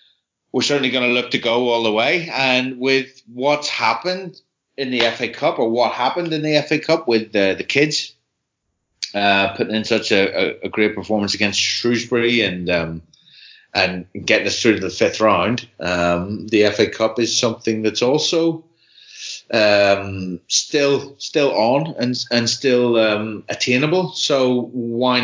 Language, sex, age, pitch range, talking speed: English, male, 30-49, 100-130 Hz, 160 wpm